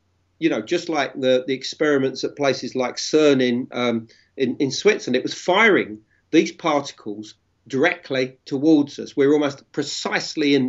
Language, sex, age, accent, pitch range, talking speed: English, male, 40-59, British, 115-155 Hz, 165 wpm